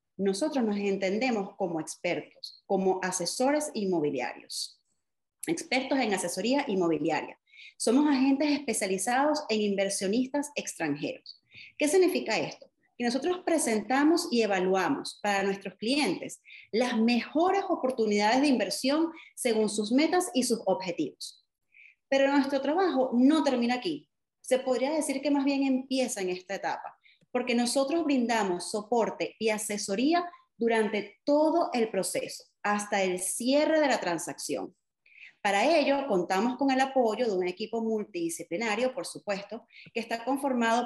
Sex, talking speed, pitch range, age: female, 130 wpm, 195-280 Hz, 30-49